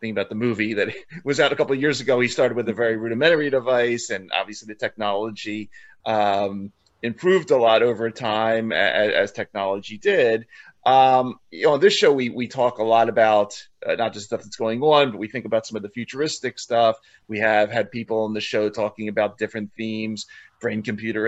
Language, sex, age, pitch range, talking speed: English, male, 30-49, 110-130 Hz, 205 wpm